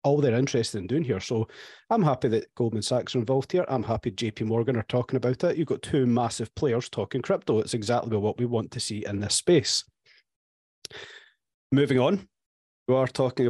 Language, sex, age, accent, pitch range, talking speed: English, male, 30-49, British, 120-140 Hz, 200 wpm